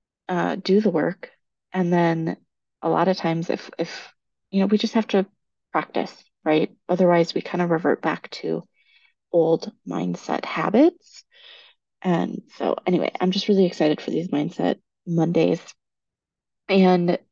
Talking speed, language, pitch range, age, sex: 145 wpm, English, 165-210 Hz, 30-49, female